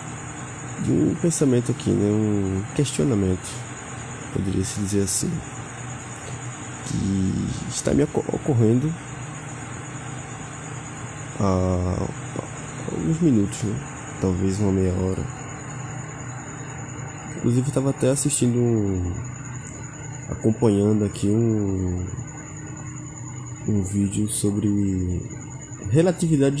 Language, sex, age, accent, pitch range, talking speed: Portuguese, male, 20-39, Brazilian, 105-140 Hz, 75 wpm